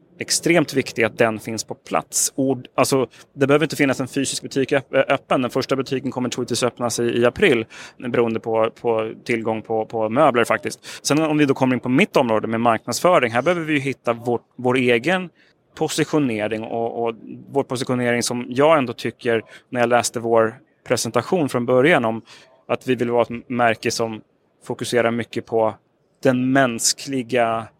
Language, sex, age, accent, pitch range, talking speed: Swedish, male, 30-49, native, 115-130 Hz, 175 wpm